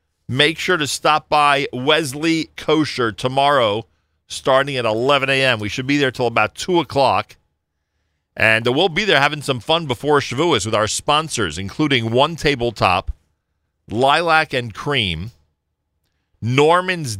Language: English